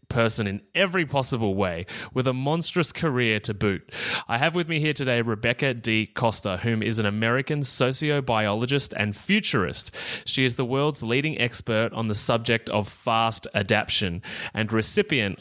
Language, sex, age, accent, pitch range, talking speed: English, male, 20-39, Australian, 110-140 Hz, 160 wpm